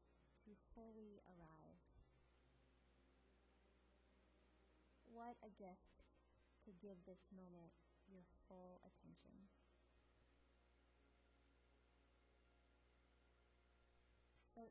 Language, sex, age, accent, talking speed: English, female, 30-49, American, 50 wpm